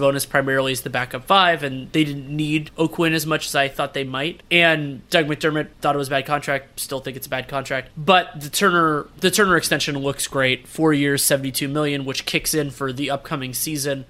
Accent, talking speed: American, 220 wpm